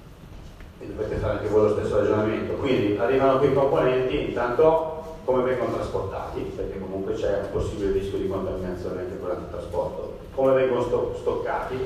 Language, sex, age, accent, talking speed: Italian, male, 40-59, native, 150 wpm